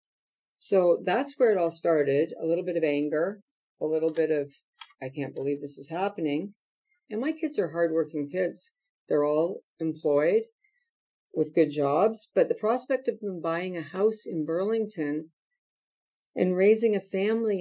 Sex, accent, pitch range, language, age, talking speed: female, American, 150-195 Hz, English, 50-69, 160 wpm